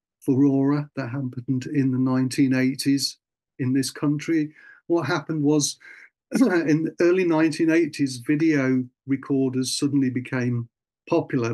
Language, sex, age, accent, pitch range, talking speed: English, male, 50-69, British, 125-145 Hz, 115 wpm